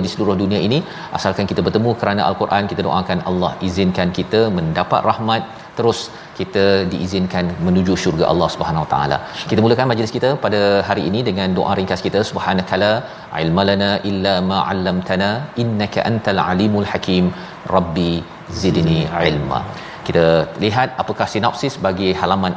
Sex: male